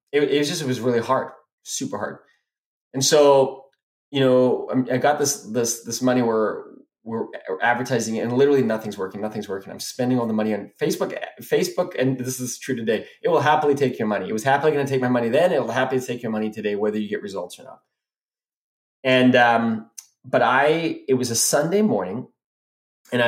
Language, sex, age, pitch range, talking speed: English, male, 20-39, 110-135 Hz, 200 wpm